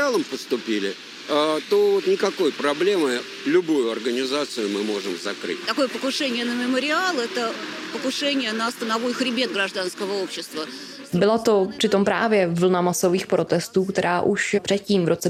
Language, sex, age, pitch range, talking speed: Czech, female, 20-39, 175-200 Hz, 95 wpm